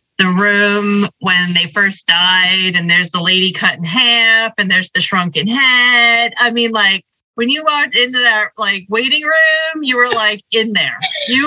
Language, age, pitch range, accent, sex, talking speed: English, 30-49, 165-225 Hz, American, female, 185 wpm